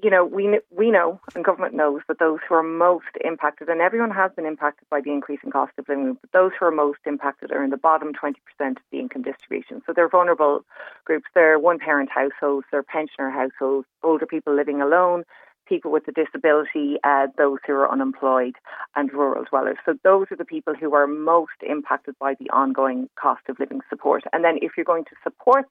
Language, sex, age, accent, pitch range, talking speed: English, female, 30-49, Irish, 140-175 Hz, 210 wpm